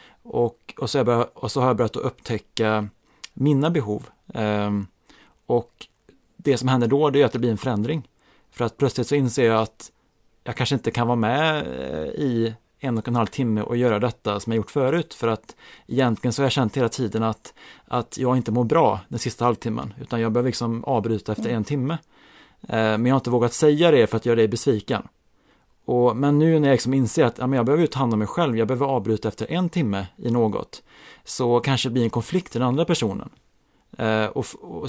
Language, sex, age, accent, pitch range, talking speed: Swedish, male, 30-49, Norwegian, 110-140 Hz, 215 wpm